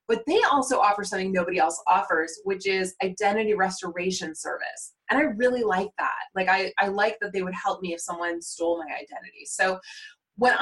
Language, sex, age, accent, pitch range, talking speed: English, female, 20-39, American, 180-240 Hz, 190 wpm